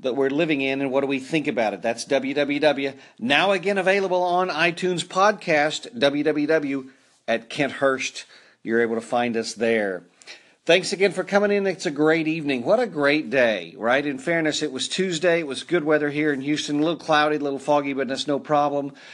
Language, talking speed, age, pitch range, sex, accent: English, 200 wpm, 40-59, 135-165 Hz, male, American